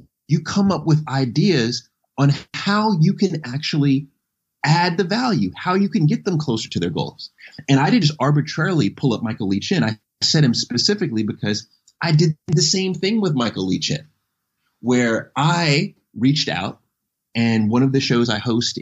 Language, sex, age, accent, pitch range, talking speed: English, male, 30-49, American, 110-155 Hz, 180 wpm